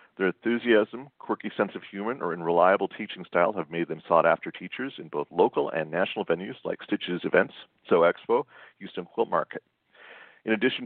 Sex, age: male, 50-69